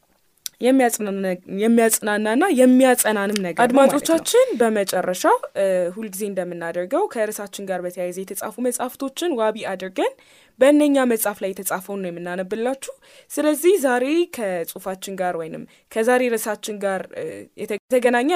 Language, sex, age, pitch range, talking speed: Amharic, female, 10-29, 205-295 Hz, 100 wpm